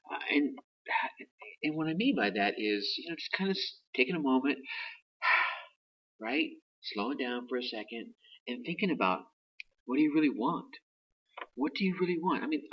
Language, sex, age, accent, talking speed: English, male, 40-59, American, 175 wpm